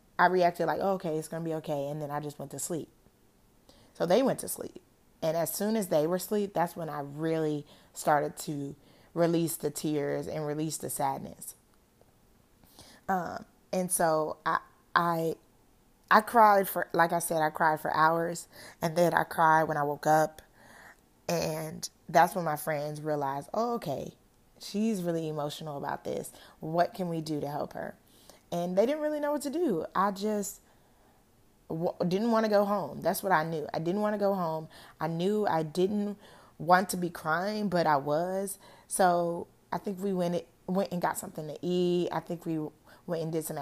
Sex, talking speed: female, 190 wpm